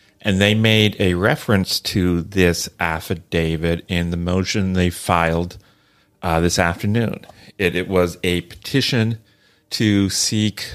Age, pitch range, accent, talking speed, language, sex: 40-59, 95-110 Hz, American, 130 wpm, English, male